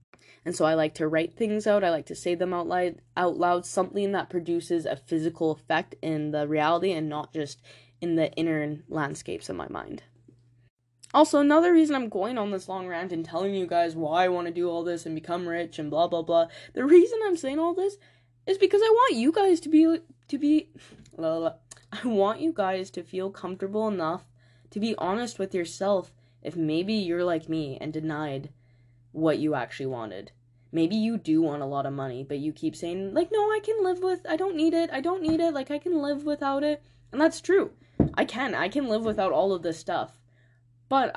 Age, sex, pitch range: 10-29, female, 150-210 Hz